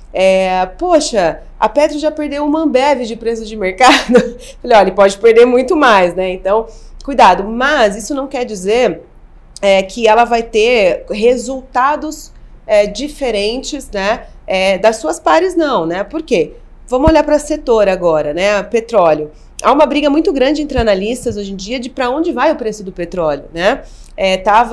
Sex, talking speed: female, 170 wpm